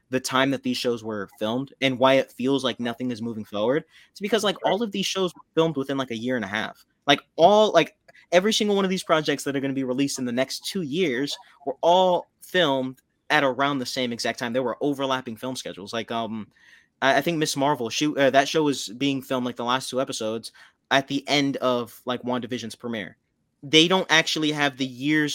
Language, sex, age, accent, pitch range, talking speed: English, male, 20-39, American, 125-155 Hz, 230 wpm